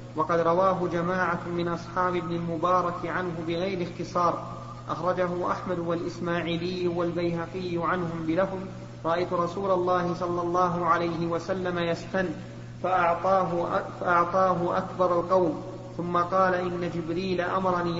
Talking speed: 105 wpm